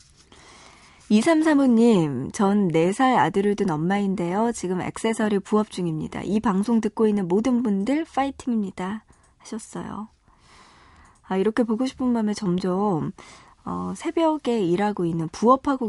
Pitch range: 185-240 Hz